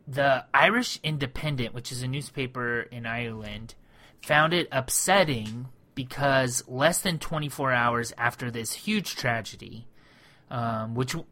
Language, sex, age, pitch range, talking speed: English, male, 30-49, 120-145 Hz, 120 wpm